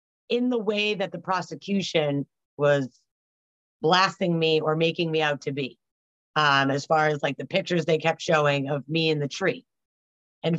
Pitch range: 160-245 Hz